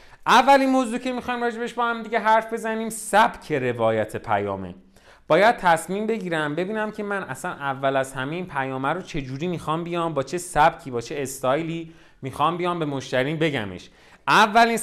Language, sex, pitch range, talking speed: Persian, male, 140-195 Hz, 170 wpm